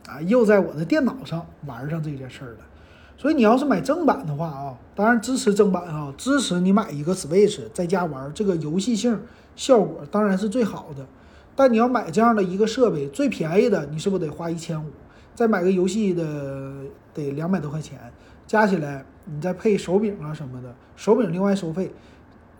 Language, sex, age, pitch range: Chinese, male, 30-49, 160-220 Hz